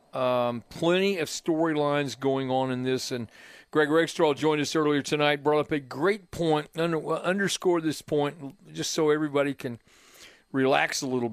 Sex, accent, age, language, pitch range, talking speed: male, American, 50-69, English, 130-170 Hz, 165 wpm